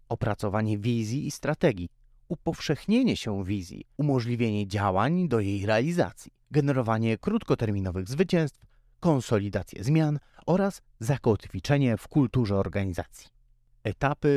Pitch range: 105-135 Hz